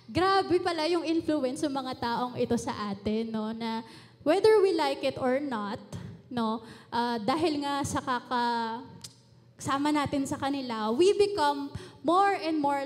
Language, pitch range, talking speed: Filipino, 250-345 Hz, 155 wpm